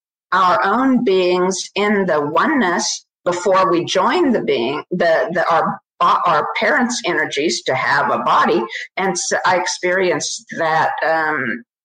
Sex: female